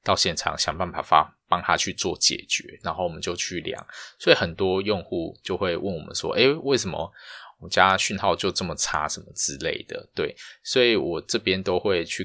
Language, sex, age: Chinese, male, 20-39